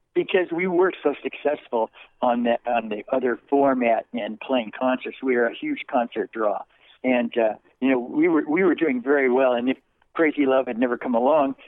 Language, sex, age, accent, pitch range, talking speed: English, male, 60-79, American, 120-155 Hz, 200 wpm